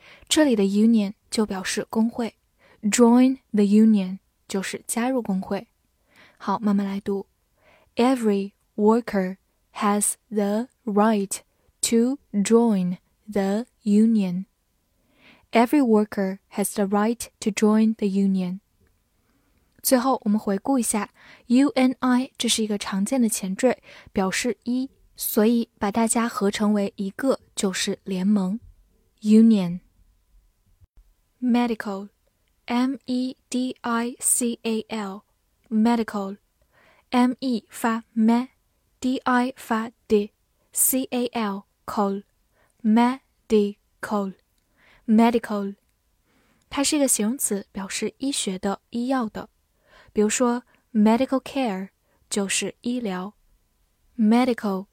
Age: 10-29